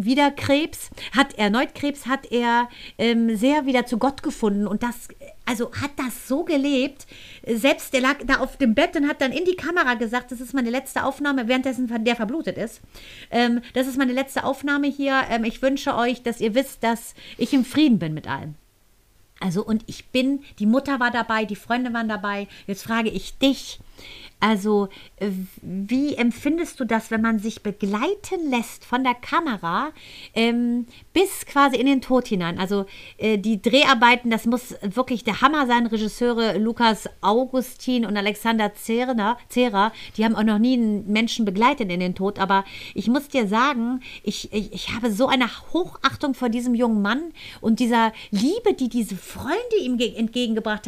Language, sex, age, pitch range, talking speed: German, female, 40-59, 220-270 Hz, 180 wpm